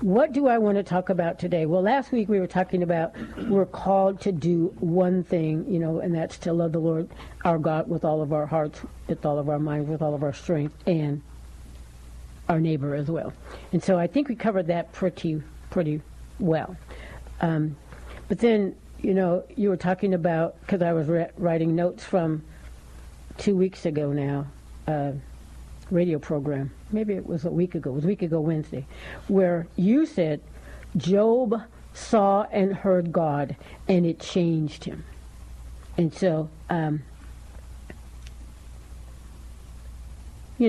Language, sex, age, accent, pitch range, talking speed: English, female, 60-79, American, 140-185 Hz, 165 wpm